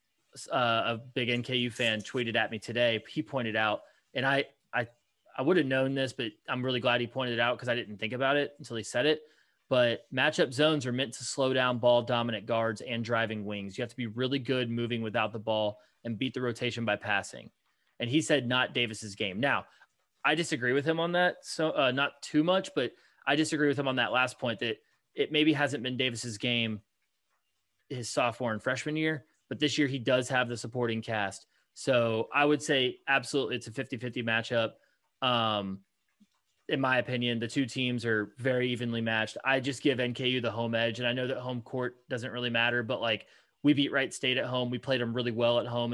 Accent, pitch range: American, 115-135 Hz